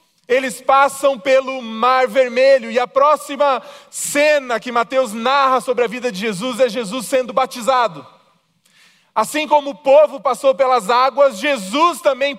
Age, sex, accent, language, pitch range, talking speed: 20-39, male, Brazilian, Portuguese, 255-290 Hz, 145 wpm